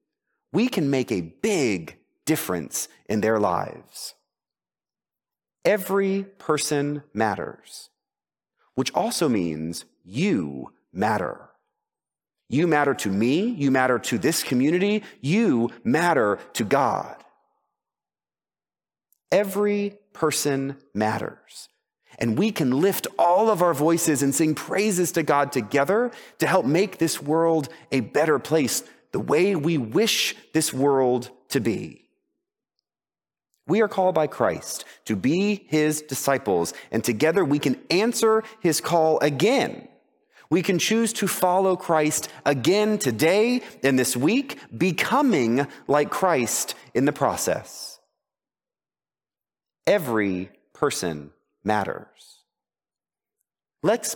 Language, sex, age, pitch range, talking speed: English, male, 30-49, 130-195 Hz, 110 wpm